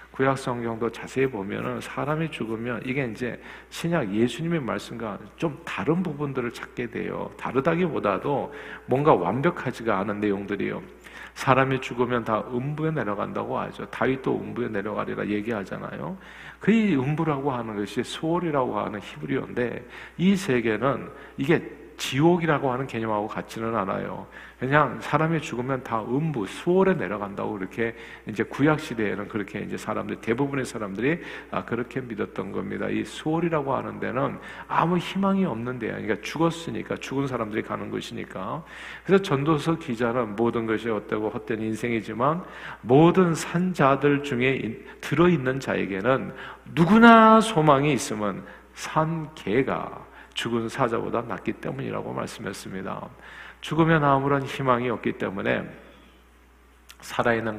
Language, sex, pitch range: Korean, male, 110-155 Hz